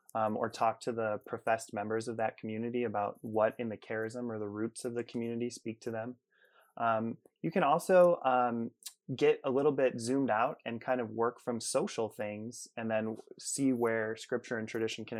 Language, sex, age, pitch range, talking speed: English, male, 20-39, 110-125 Hz, 195 wpm